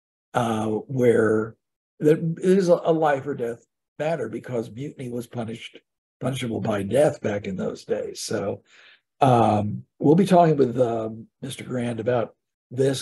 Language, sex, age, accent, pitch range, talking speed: English, male, 60-79, American, 115-145 Hz, 145 wpm